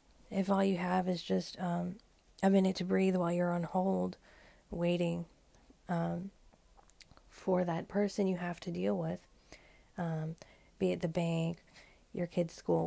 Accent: American